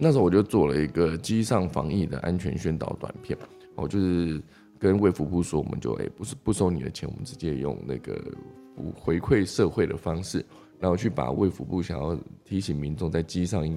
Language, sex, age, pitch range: Chinese, male, 20-39, 75-90 Hz